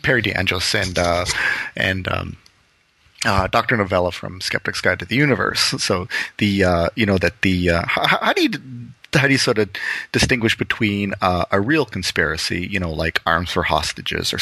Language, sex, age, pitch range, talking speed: English, male, 30-49, 90-105 Hz, 185 wpm